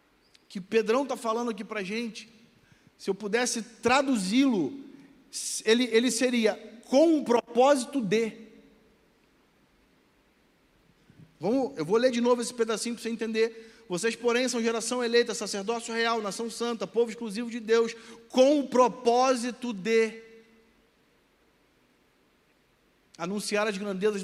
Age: 40-59